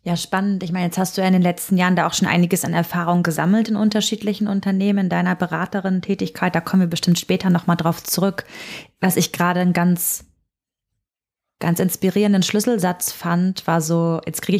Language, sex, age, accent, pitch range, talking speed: German, female, 20-39, German, 170-205 Hz, 185 wpm